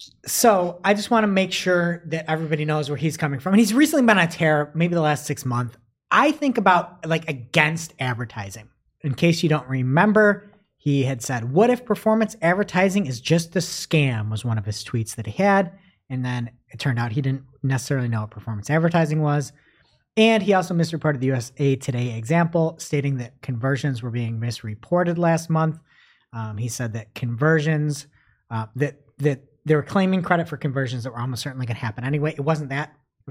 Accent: American